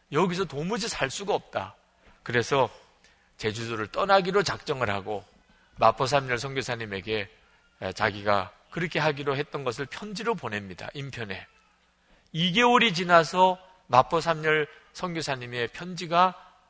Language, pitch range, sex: Korean, 120-195 Hz, male